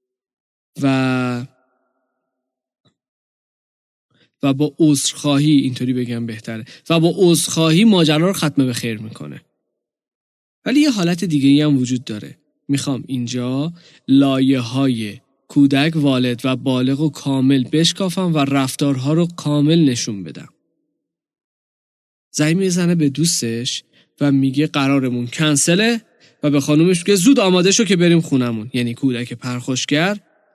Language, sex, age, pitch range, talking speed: Persian, male, 20-39, 130-175 Hz, 120 wpm